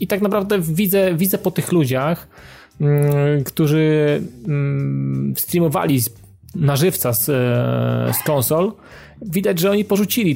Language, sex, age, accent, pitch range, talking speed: Polish, male, 30-49, native, 130-160 Hz, 110 wpm